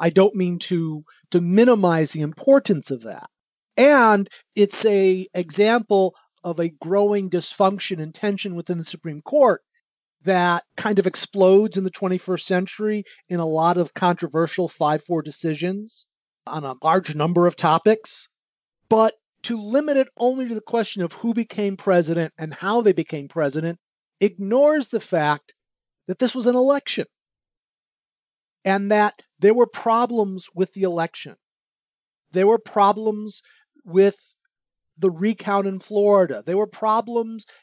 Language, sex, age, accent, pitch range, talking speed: English, male, 40-59, American, 180-225 Hz, 140 wpm